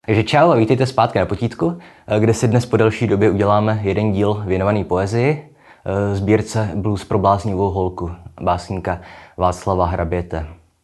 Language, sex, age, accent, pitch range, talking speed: Czech, male, 20-39, native, 90-110 Hz, 145 wpm